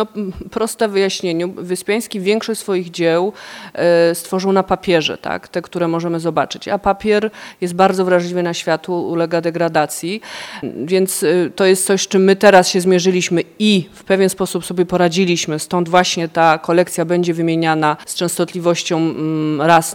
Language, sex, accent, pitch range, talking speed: Polish, female, native, 160-185 Hz, 145 wpm